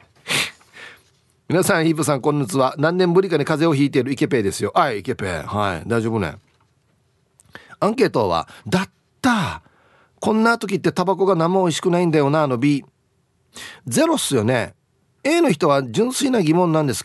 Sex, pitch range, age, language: male, 120-180 Hz, 40-59, Japanese